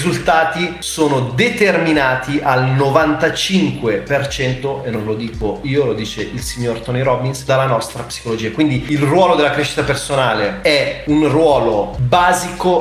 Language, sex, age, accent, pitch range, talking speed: Italian, male, 30-49, native, 130-150 Hz, 140 wpm